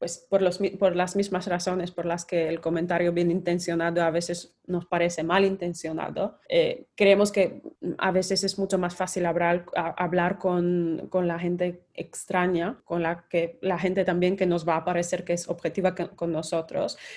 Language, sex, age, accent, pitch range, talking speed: Spanish, female, 20-39, Spanish, 175-195 Hz, 180 wpm